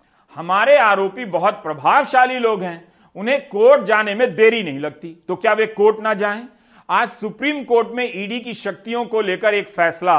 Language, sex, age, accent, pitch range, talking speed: Hindi, male, 40-59, native, 170-225 Hz, 175 wpm